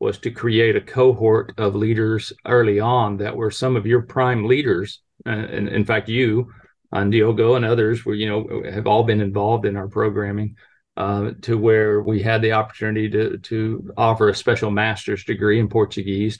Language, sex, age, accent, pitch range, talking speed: English, male, 40-59, American, 105-115 Hz, 185 wpm